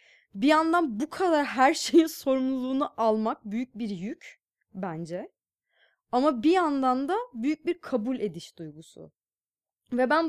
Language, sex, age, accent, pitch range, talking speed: Turkish, female, 20-39, native, 200-300 Hz, 135 wpm